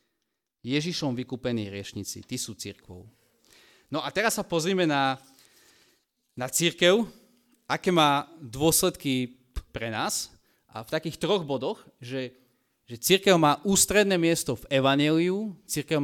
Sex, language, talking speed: male, Slovak, 125 wpm